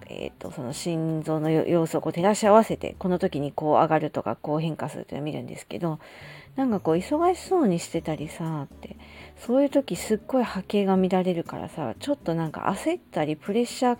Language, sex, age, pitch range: Japanese, female, 40-59, 150-205 Hz